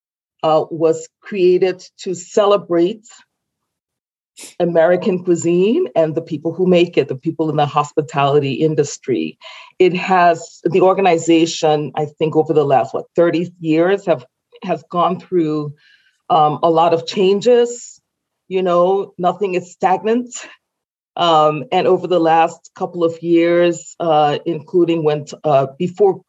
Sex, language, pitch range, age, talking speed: female, English, 155-190 Hz, 40-59, 135 wpm